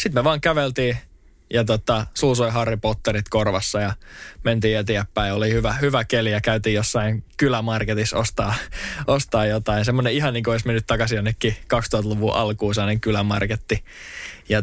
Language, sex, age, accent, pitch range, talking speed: Finnish, male, 20-39, native, 105-125 Hz, 150 wpm